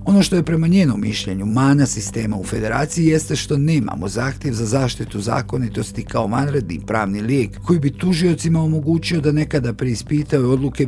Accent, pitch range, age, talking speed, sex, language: native, 115-160 Hz, 50-69, 160 wpm, male, Croatian